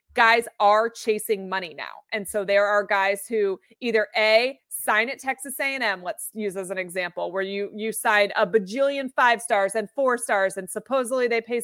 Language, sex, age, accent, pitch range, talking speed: English, female, 30-49, American, 205-250 Hz, 190 wpm